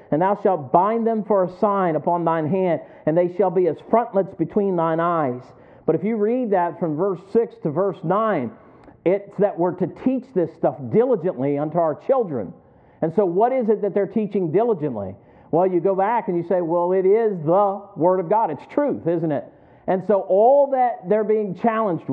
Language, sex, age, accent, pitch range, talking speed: English, male, 50-69, American, 170-220 Hz, 205 wpm